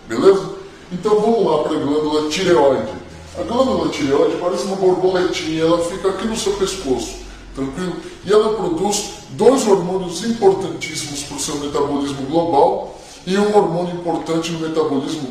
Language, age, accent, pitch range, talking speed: Portuguese, 20-39, Brazilian, 155-195 Hz, 150 wpm